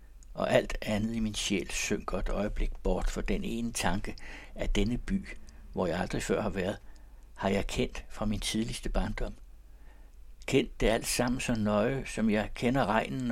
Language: Danish